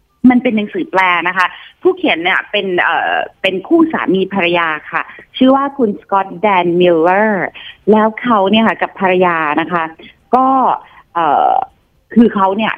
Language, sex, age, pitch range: Thai, female, 30-49, 175-250 Hz